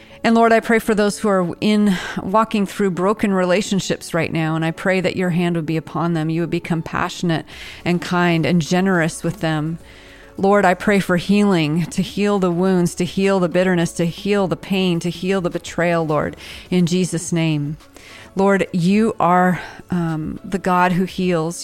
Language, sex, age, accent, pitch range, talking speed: English, female, 40-59, American, 165-190 Hz, 190 wpm